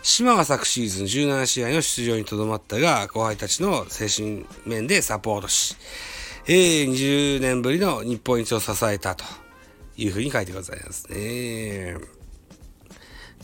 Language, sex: Japanese, male